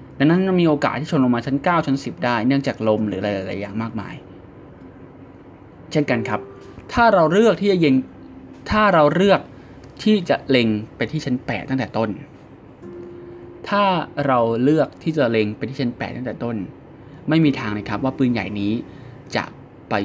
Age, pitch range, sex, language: 20-39, 105-145 Hz, male, Thai